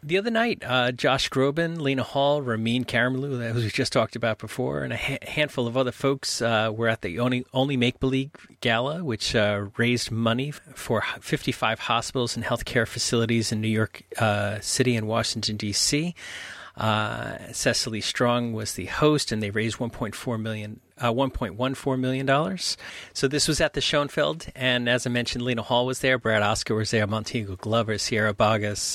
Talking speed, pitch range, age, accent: 180 wpm, 110-130 Hz, 40-59, American